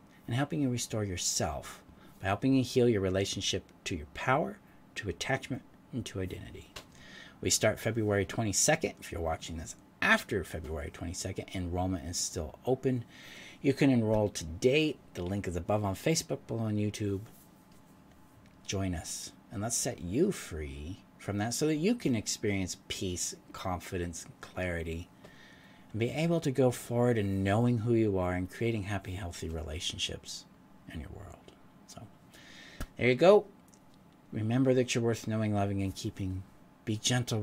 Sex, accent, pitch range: male, American, 95-120 Hz